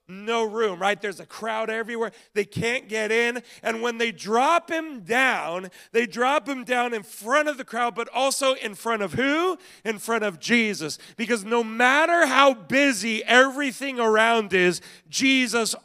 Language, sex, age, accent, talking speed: English, male, 40-59, American, 170 wpm